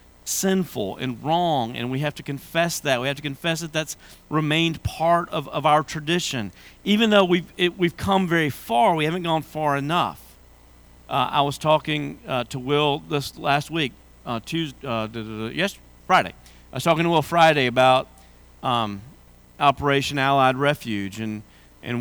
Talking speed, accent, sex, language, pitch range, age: 170 wpm, American, male, English, 115-160 Hz, 40-59